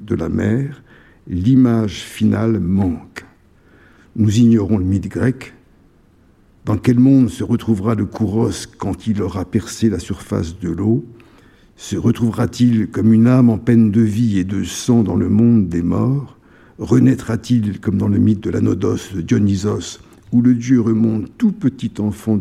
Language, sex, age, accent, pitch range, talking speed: French, male, 60-79, French, 95-120 Hz, 165 wpm